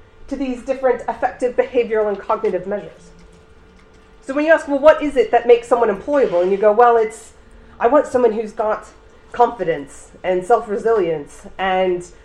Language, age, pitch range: English, 30-49, 180-245 Hz